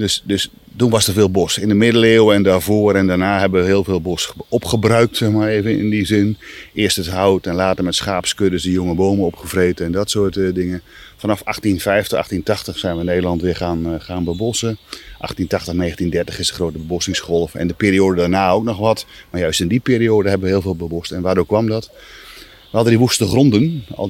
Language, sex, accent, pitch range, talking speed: Dutch, male, Dutch, 85-105 Hz, 210 wpm